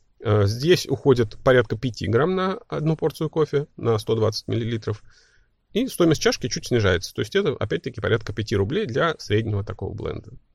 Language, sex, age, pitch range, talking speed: Russian, male, 30-49, 100-130 Hz, 160 wpm